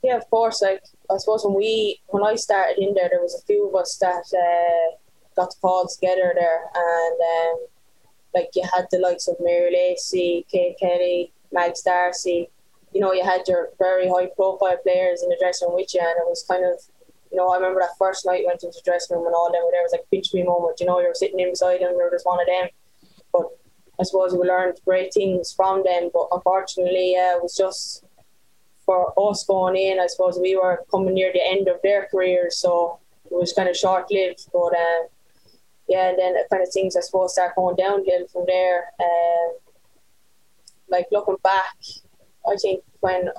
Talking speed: 215 wpm